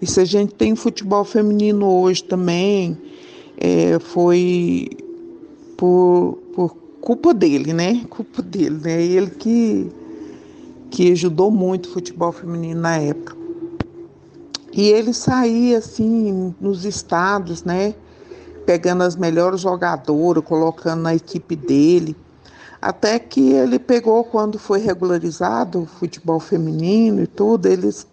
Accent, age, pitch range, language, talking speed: Brazilian, 50-69, 170-230 Hz, Portuguese, 120 wpm